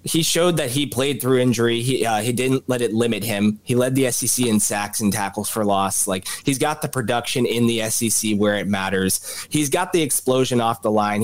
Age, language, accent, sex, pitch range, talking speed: 20-39, English, American, male, 110-130 Hz, 230 wpm